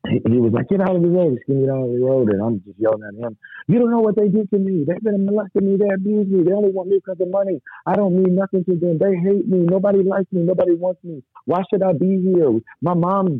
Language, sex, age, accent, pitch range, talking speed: English, male, 40-59, American, 100-140 Hz, 280 wpm